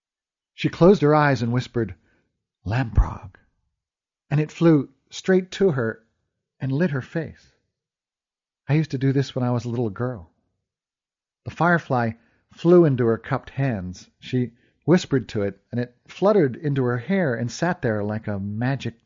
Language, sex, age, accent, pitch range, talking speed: English, male, 50-69, American, 105-155 Hz, 160 wpm